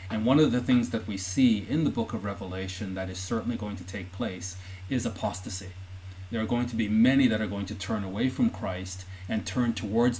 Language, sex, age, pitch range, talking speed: English, male, 40-59, 95-115 Hz, 230 wpm